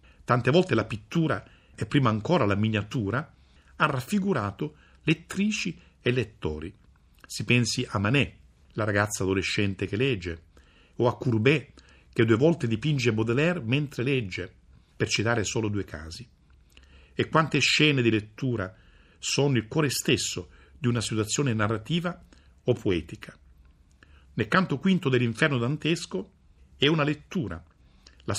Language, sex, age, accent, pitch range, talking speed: Italian, male, 50-69, native, 85-125 Hz, 130 wpm